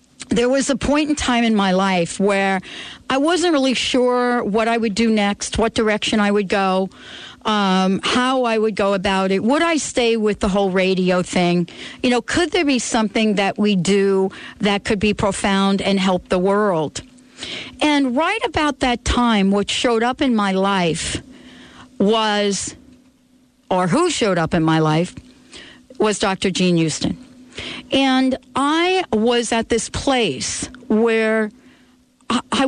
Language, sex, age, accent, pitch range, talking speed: English, female, 60-79, American, 195-255 Hz, 160 wpm